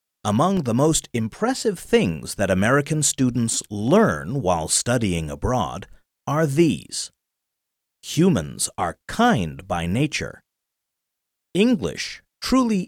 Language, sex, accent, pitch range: Japanese, male, American, 100-155 Hz